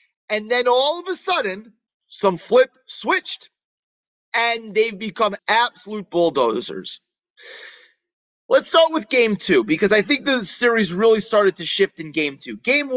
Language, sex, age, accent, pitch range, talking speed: English, male, 30-49, American, 175-235 Hz, 150 wpm